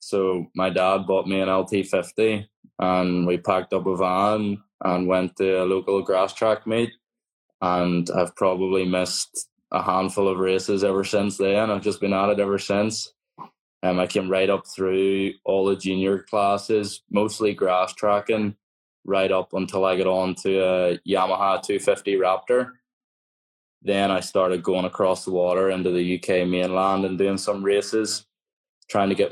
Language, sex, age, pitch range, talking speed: English, male, 10-29, 90-100 Hz, 165 wpm